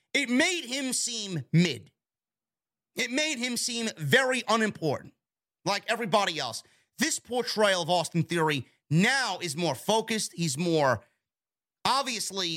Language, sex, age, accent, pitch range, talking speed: English, male, 30-49, American, 160-225 Hz, 125 wpm